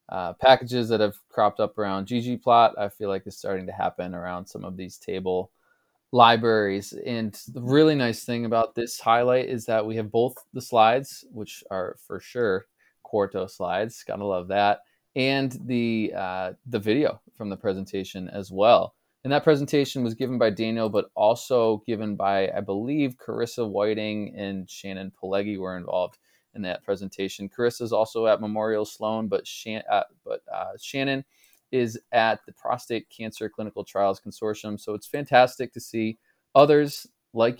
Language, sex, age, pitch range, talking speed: English, male, 20-39, 100-120 Hz, 170 wpm